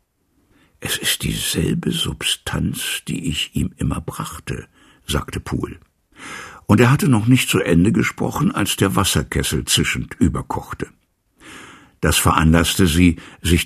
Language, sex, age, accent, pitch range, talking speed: German, male, 60-79, German, 80-105 Hz, 125 wpm